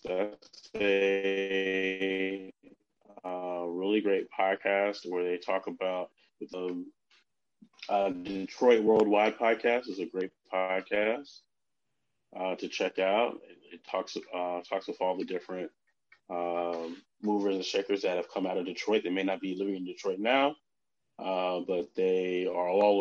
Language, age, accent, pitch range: English, 20-39, American, 90-100 Hz